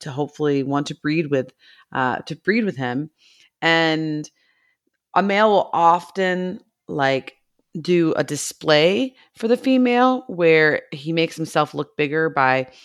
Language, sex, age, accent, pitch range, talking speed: English, female, 30-49, American, 140-175 Hz, 140 wpm